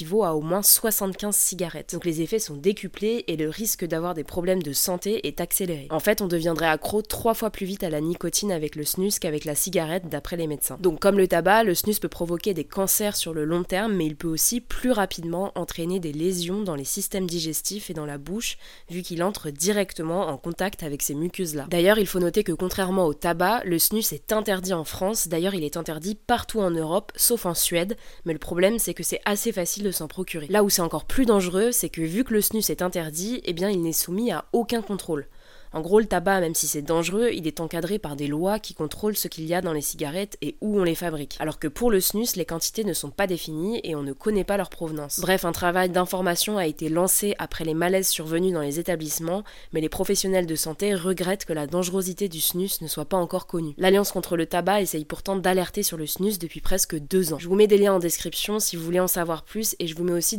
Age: 20-39